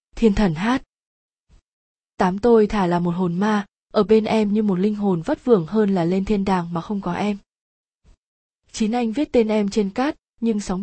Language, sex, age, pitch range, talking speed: Vietnamese, female, 20-39, 190-225 Hz, 205 wpm